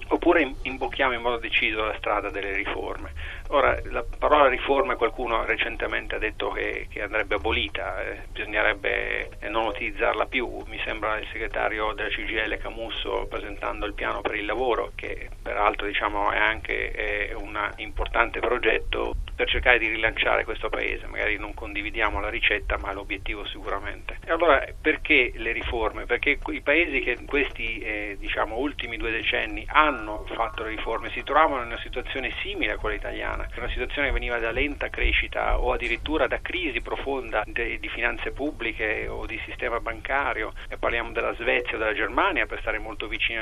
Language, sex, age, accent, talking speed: Italian, male, 40-59, native, 165 wpm